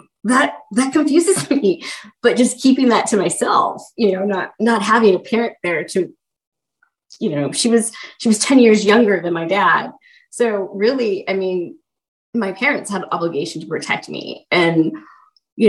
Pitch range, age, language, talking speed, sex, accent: 180-230 Hz, 20-39, English, 170 wpm, female, American